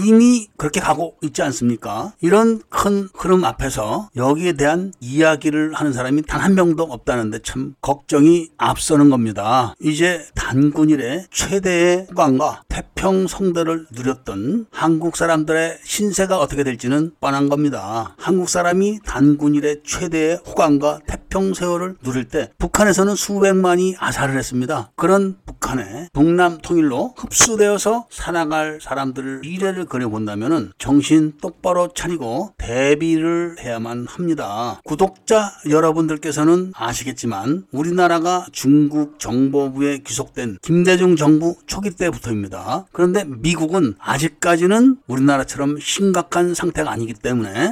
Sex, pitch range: male, 130-175 Hz